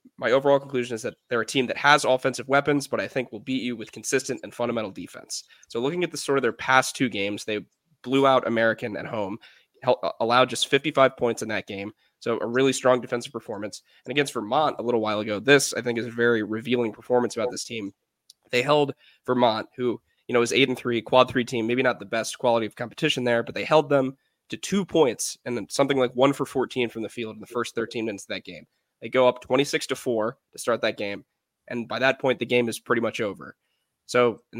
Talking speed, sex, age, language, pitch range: 240 wpm, male, 20-39, English, 115-135 Hz